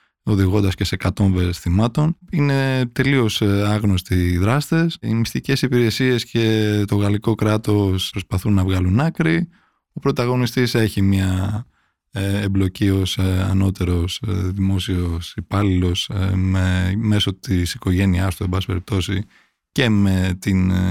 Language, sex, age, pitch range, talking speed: Greek, male, 20-39, 95-140 Hz, 110 wpm